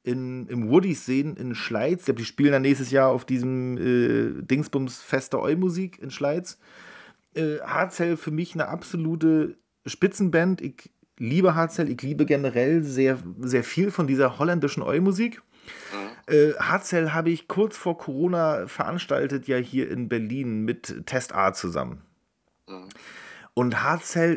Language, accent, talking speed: German, German, 140 wpm